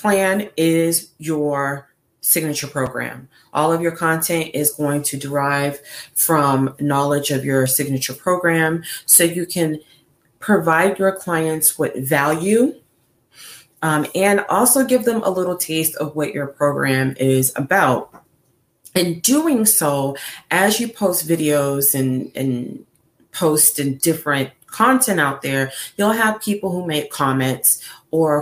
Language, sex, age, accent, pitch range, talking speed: English, female, 30-49, American, 140-170 Hz, 135 wpm